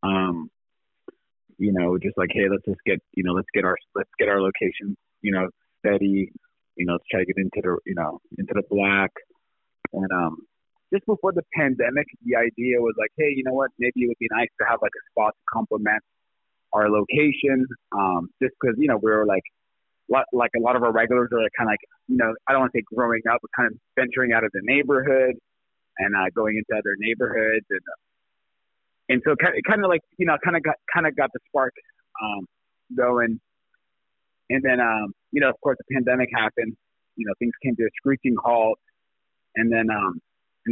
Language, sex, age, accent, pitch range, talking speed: English, male, 30-49, American, 100-125 Hz, 215 wpm